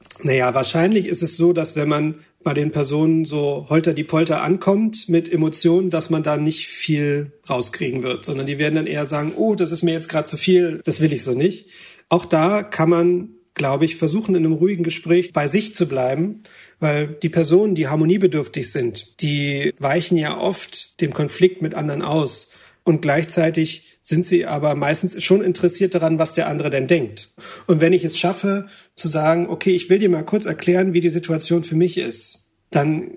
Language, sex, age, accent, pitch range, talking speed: German, male, 40-59, German, 155-180 Hz, 195 wpm